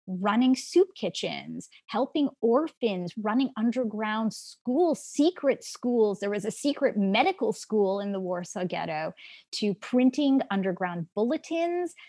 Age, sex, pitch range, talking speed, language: 20-39, female, 195-265 Hz, 120 wpm, English